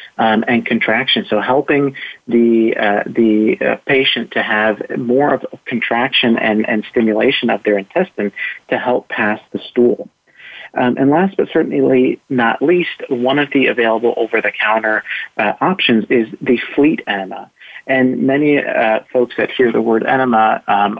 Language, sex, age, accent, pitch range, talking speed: English, male, 40-59, American, 110-130 Hz, 165 wpm